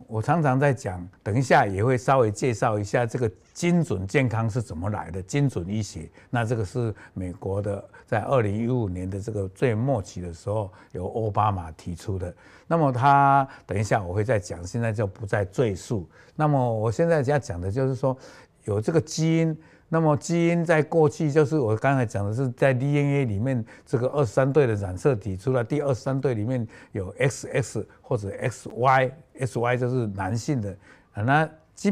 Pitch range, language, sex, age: 100-140 Hz, Chinese, male, 60-79